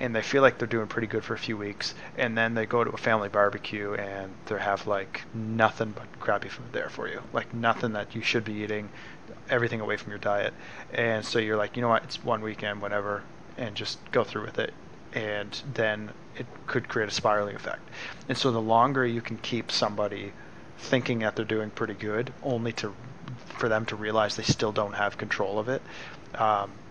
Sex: male